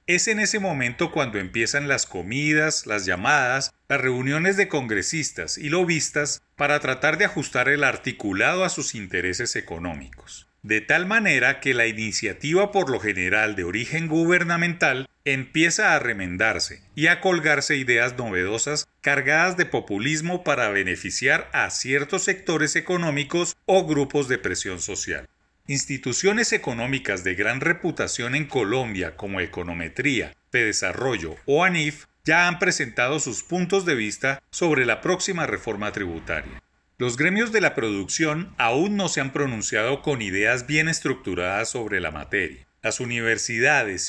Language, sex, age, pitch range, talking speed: Spanish, male, 40-59, 120-170 Hz, 140 wpm